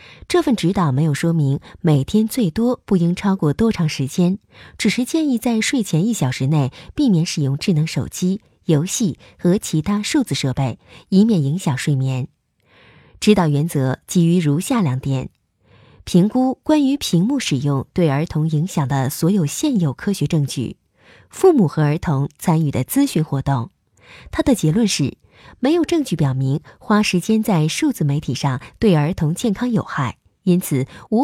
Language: Chinese